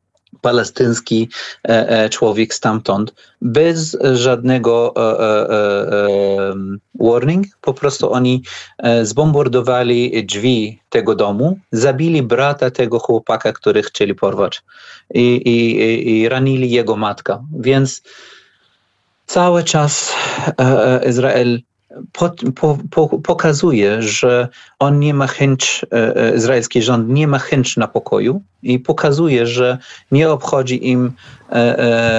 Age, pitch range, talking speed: 40-59, 115-135 Hz, 95 wpm